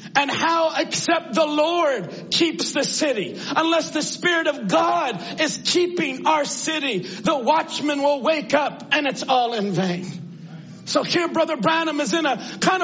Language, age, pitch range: English, 40-59, 255-310 Hz